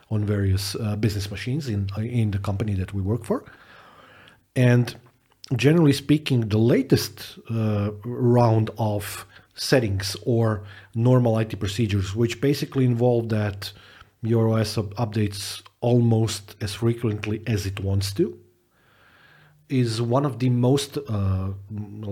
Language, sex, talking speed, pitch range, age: English, male, 125 wpm, 100-120 Hz, 40-59